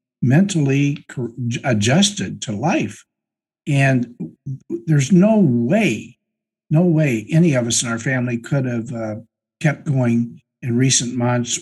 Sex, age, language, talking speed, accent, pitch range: male, 60-79, English, 125 wpm, American, 120-155 Hz